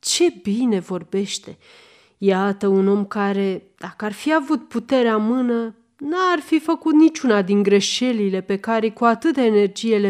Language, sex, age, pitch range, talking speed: Romanian, female, 30-49, 195-265 Hz, 155 wpm